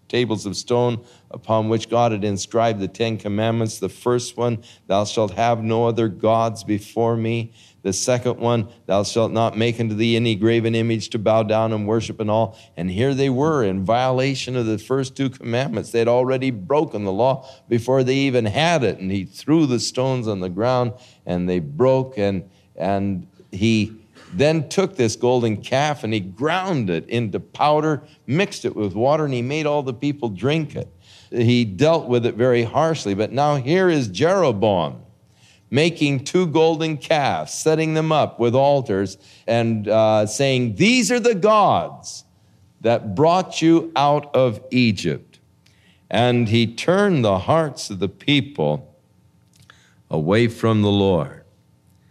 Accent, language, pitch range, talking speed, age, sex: American, English, 110-140 Hz, 165 wpm, 50-69, male